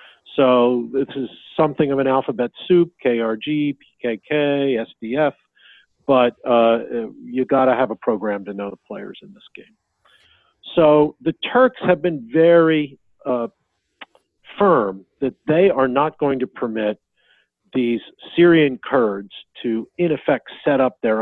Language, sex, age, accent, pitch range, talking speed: English, male, 50-69, American, 115-145 Hz, 140 wpm